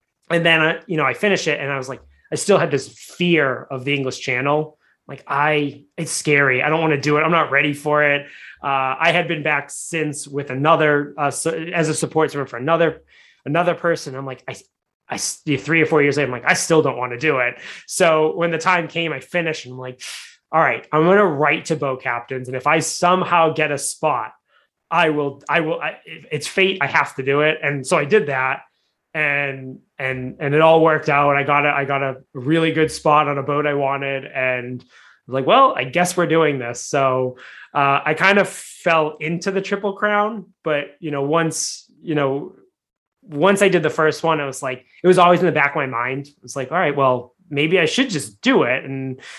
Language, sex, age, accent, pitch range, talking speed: English, male, 20-39, American, 140-165 Hz, 230 wpm